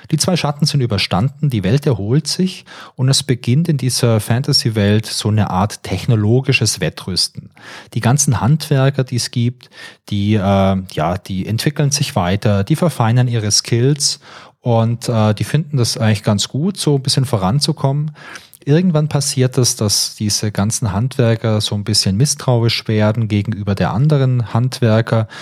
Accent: German